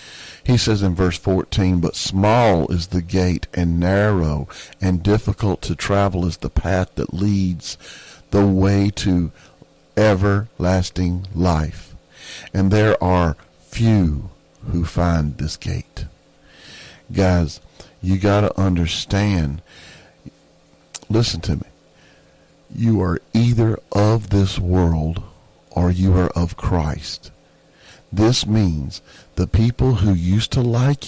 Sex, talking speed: male, 120 wpm